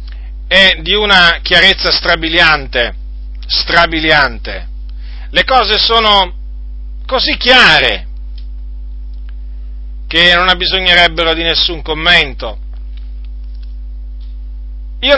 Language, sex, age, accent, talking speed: Italian, male, 40-59, native, 75 wpm